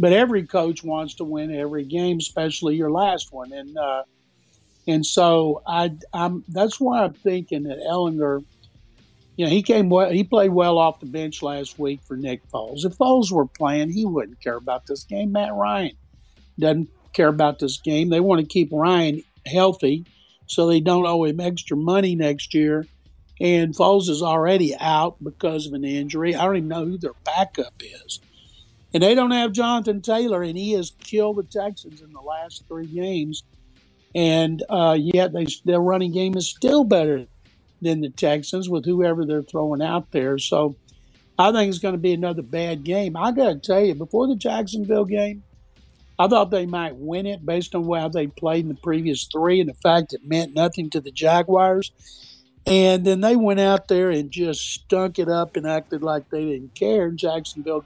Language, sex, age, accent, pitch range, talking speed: English, male, 60-79, American, 150-185 Hz, 190 wpm